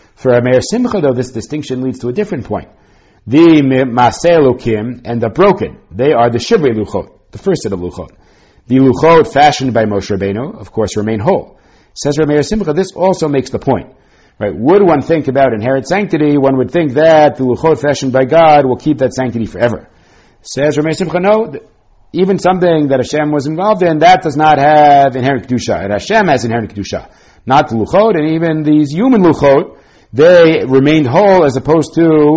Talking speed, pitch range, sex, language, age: 190 wpm, 105-155 Hz, male, English, 60-79